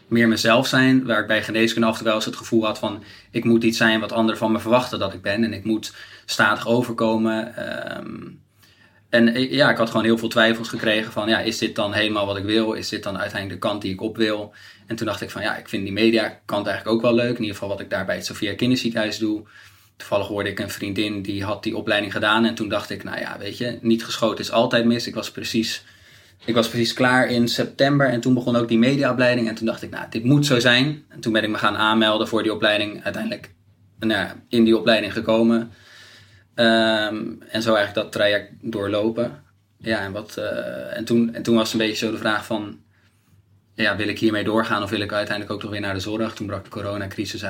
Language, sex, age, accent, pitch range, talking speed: Dutch, male, 20-39, Dutch, 105-115 Hz, 240 wpm